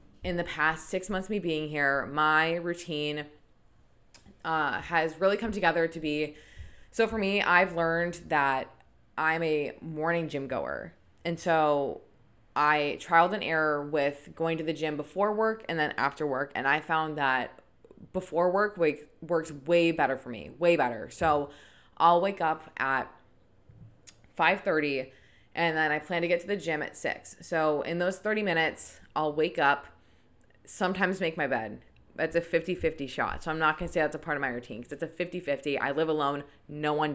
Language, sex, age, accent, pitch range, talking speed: English, female, 20-39, American, 140-170 Hz, 180 wpm